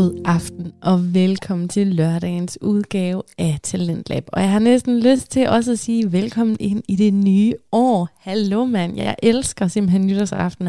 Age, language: 20-39, Danish